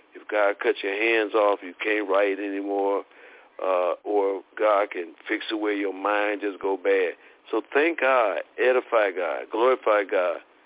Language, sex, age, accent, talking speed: English, male, 50-69, American, 165 wpm